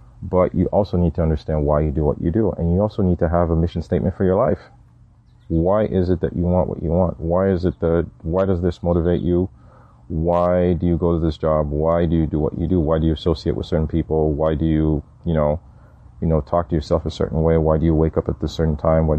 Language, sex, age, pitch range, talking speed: English, male, 30-49, 75-90 Hz, 270 wpm